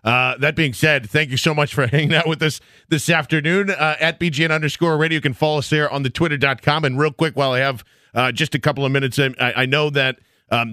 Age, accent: 40-59, American